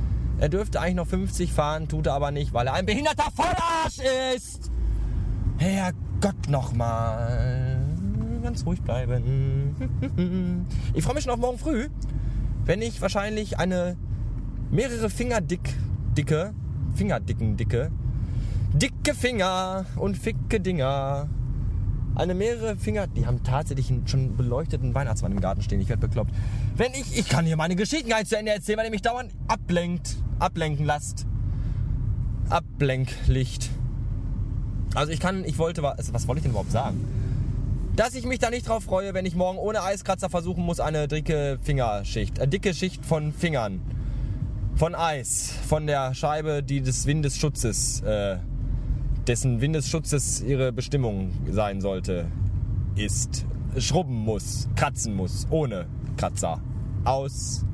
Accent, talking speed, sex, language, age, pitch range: German, 140 wpm, male, German, 20-39, 110-150 Hz